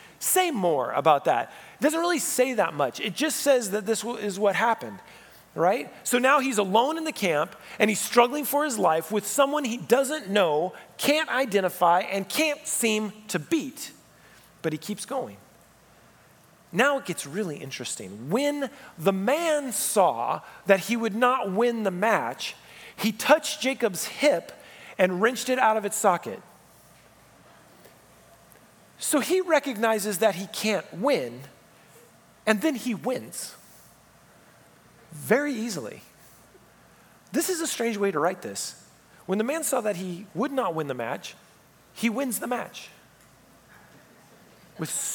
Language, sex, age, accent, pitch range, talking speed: English, male, 40-59, American, 180-275 Hz, 150 wpm